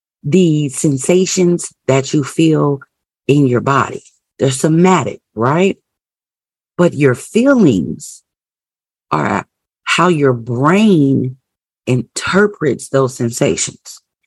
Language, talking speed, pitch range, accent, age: English, 90 wpm, 135-180 Hz, American, 40-59